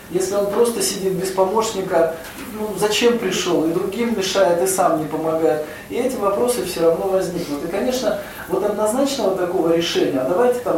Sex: male